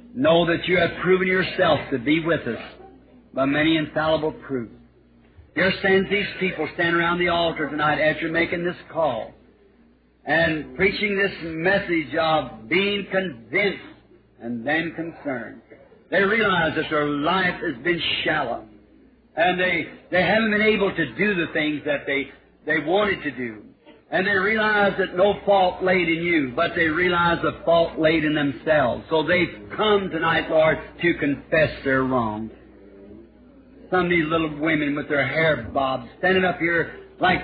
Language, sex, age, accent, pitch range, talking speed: English, male, 50-69, American, 140-180 Hz, 160 wpm